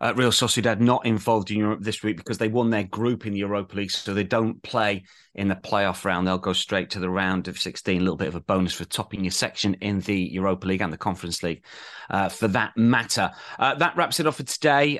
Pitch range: 100-120 Hz